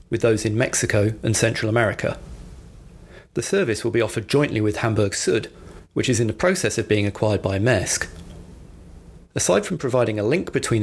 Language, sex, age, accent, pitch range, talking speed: English, male, 40-59, British, 100-115 Hz, 175 wpm